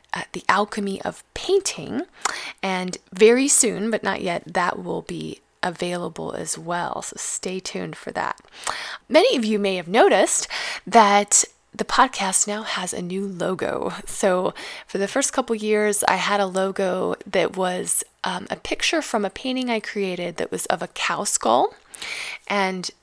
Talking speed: 165 wpm